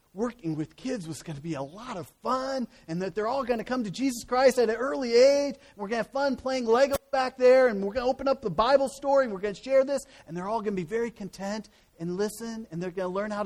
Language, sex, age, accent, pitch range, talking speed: English, male, 40-59, American, 165-255 Hz, 295 wpm